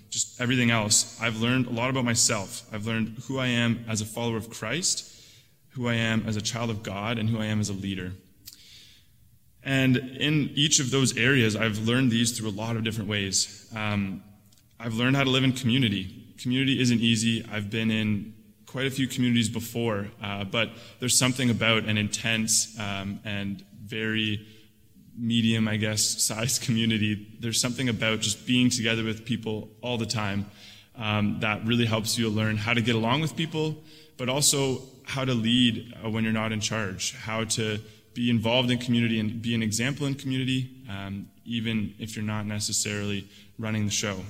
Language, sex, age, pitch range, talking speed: English, male, 20-39, 105-120 Hz, 185 wpm